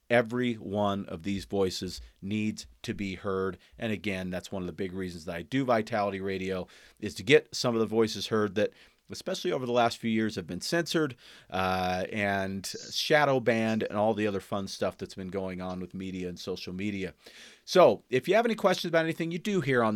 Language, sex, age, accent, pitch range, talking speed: English, male, 40-59, American, 100-135 Hz, 215 wpm